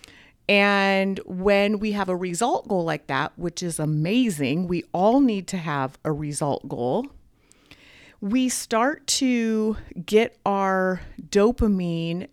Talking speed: 125 wpm